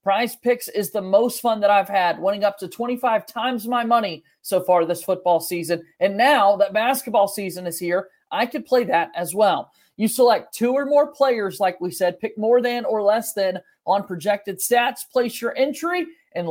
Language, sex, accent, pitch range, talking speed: English, male, American, 195-255 Hz, 205 wpm